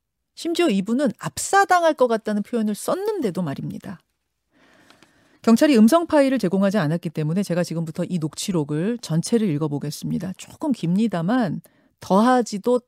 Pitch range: 190-280 Hz